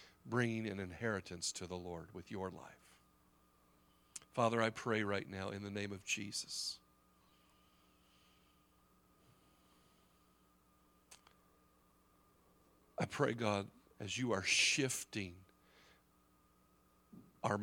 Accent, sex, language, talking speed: American, male, English, 90 wpm